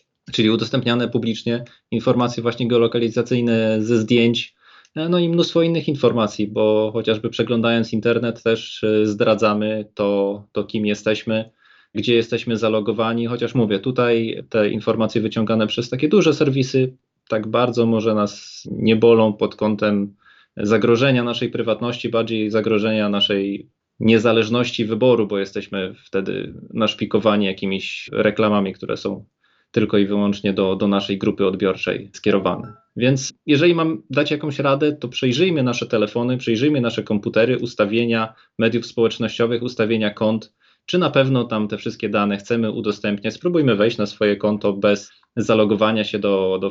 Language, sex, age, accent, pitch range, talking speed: Polish, male, 20-39, native, 105-120 Hz, 135 wpm